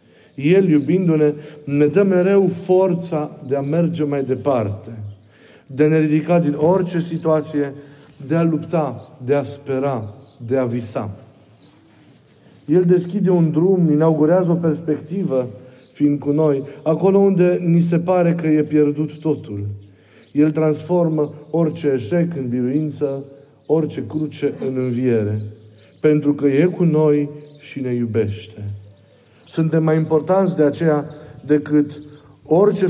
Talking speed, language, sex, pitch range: 135 wpm, Romanian, male, 125-160 Hz